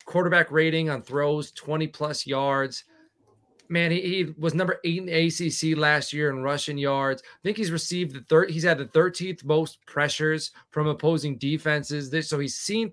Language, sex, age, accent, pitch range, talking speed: English, male, 30-49, American, 145-180 Hz, 180 wpm